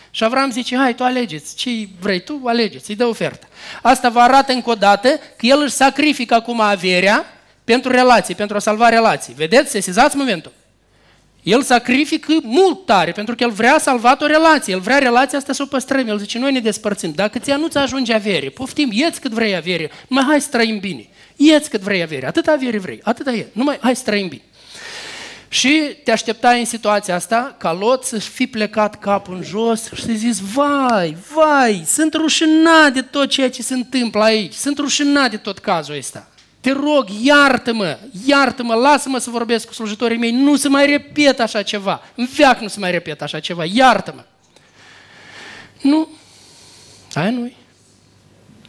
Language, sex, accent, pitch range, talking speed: Romanian, male, native, 210-275 Hz, 180 wpm